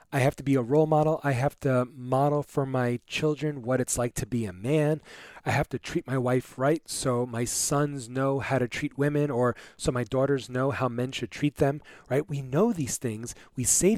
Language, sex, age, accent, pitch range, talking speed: English, male, 30-49, American, 120-155 Hz, 230 wpm